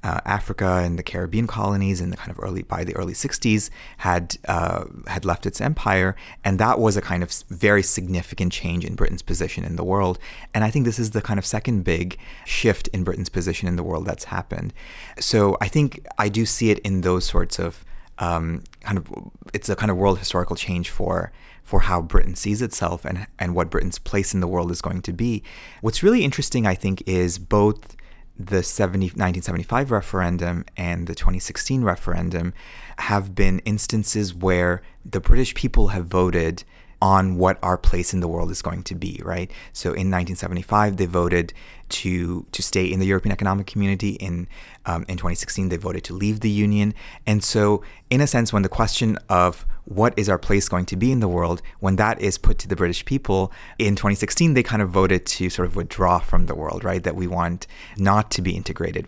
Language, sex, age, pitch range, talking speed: English, male, 30-49, 90-105 Hz, 200 wpm